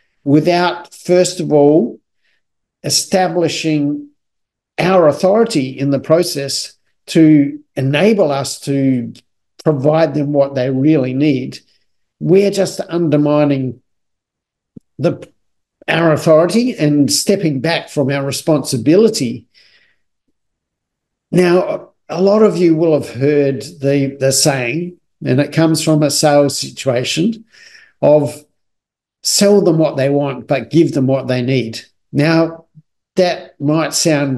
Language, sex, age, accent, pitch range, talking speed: English, male, 50-69, Australian, 135-160 Hz, 115 wpm